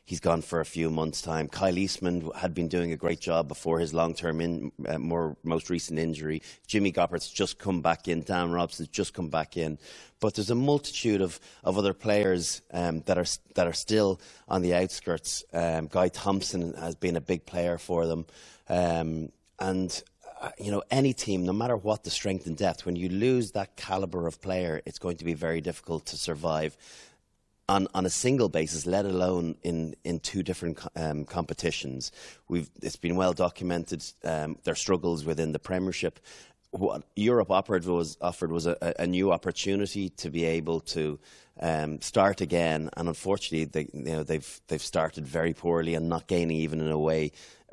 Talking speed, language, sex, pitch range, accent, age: 190 wpm, English, male, 80-95 Hz, Irish, 30-49